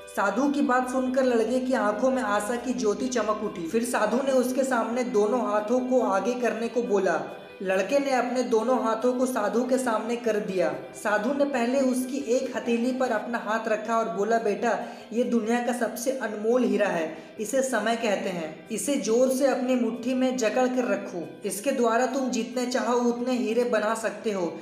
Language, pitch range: Hindi, 215-255 Hz